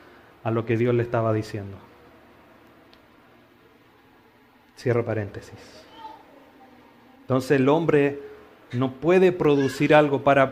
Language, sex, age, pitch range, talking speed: Spanish, male, 30-49, 120-145 Hz, 95 wpm